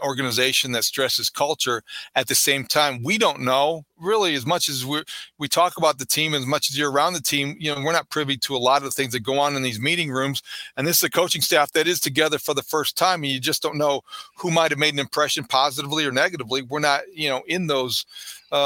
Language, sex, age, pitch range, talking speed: English, male, 40-59, 130-155 Hz, 255 wpm